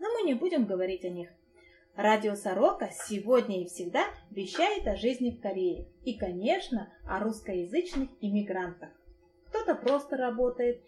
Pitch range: 185-265 Hz